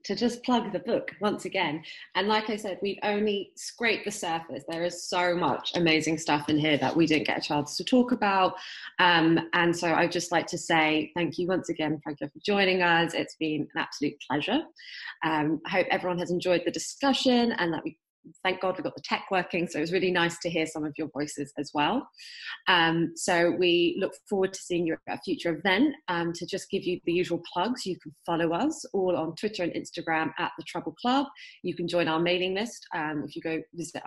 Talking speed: 225 wpm